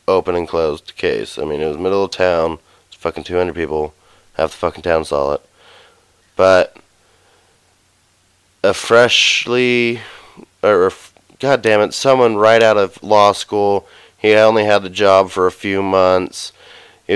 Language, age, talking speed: English, 30-49, 165 wpm